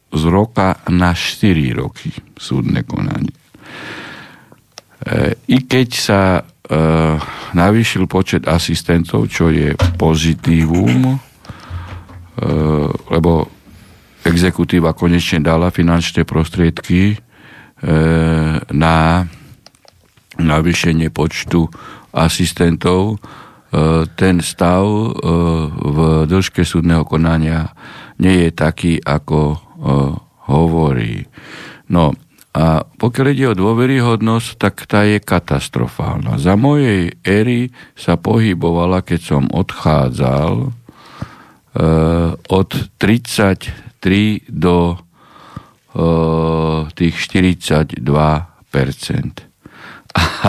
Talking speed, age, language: 80 wpm, 50-69, Slovak